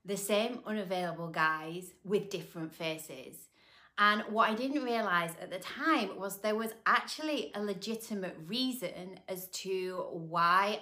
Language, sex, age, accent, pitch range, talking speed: English, female, 30-49, British, 165-215 Hz, 140 wpm